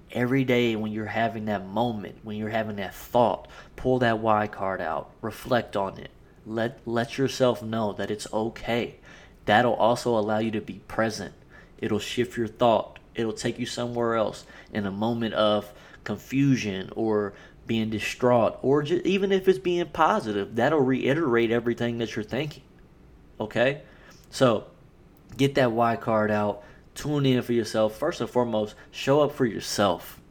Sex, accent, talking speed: male, American, 160 wpm